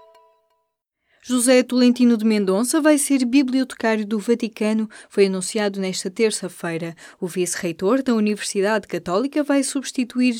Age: 20-39